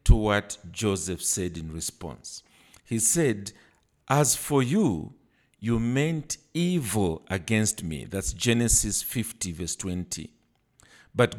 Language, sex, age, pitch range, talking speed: English, male, 50-69, 90-120 Hz, 115 wpm